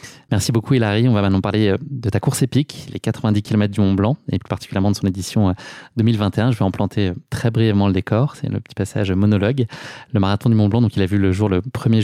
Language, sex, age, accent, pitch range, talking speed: French, male, 20-39, French, 100-120 Hz, 240 wpm